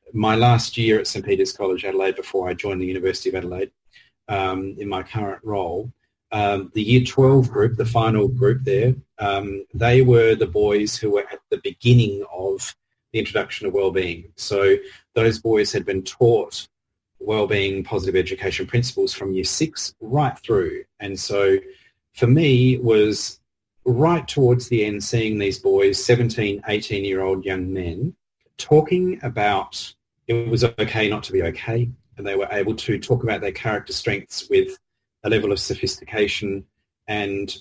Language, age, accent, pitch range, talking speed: English, 30-49, Australian, 100-130 Hz, 165 wpm